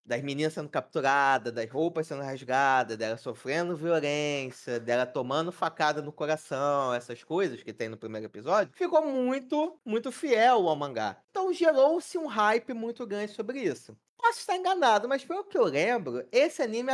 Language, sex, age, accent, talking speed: Portuguese, male, 20-39, Brazilian, 165 wpm